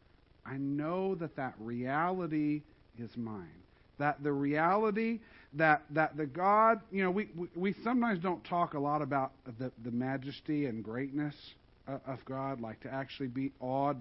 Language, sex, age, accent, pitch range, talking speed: English, male, 50-69, American, 135-190 Hz, 160 wpm